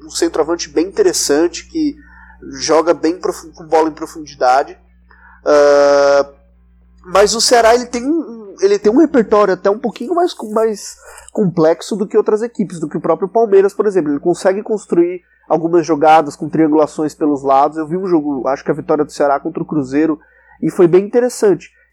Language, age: Portuguese, 20-39